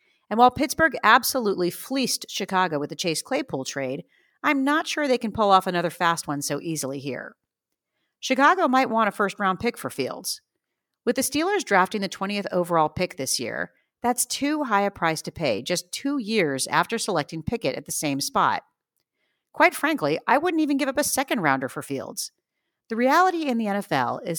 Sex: female